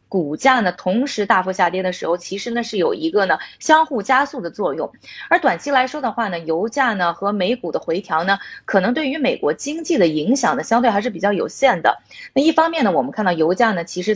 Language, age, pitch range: Chinese, 20-39, 195-270 Hz